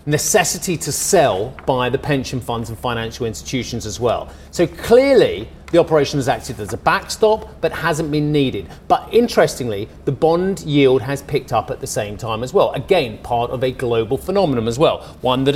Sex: male